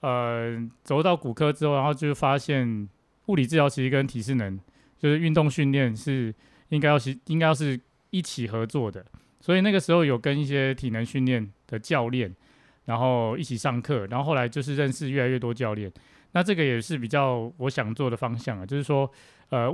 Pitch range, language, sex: 115-145 Hz, Chinese, male